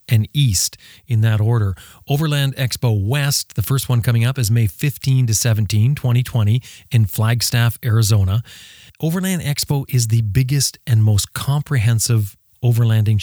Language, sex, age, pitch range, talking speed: English, male, 30-49, 105-130 Hz, 140 wpm